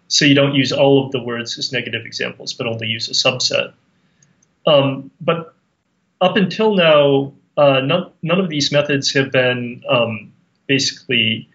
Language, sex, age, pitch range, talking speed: English, male, 30-49, 115-150 Hz, 160 wpm